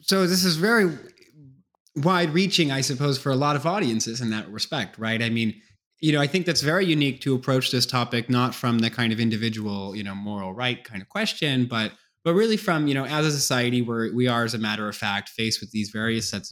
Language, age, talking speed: English, 20-39, 235 wpm